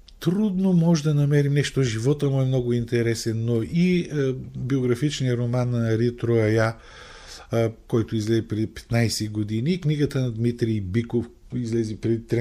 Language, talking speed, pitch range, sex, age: Bulgarian, 145 wpm, 90-130 Hz, male, 50-69